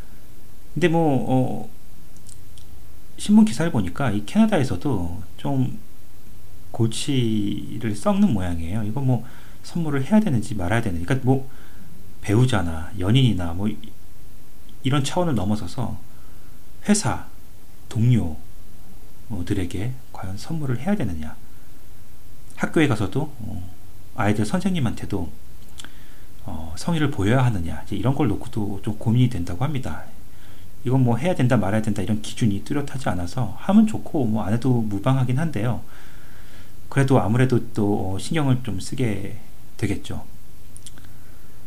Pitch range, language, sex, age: 100-130 Hz, Korean, male, 40-59